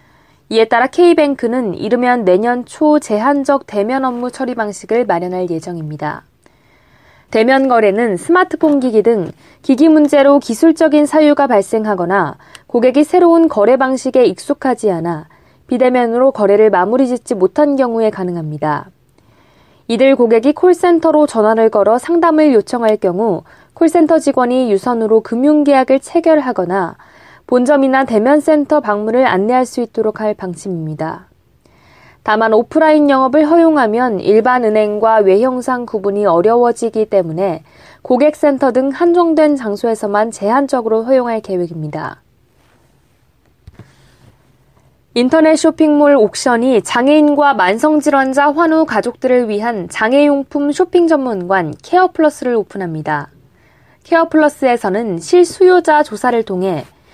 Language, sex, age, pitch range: Korean, female, 20-39, 210-295 Hz